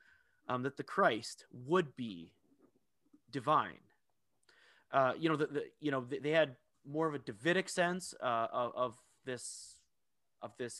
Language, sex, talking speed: English, male, 155 wpm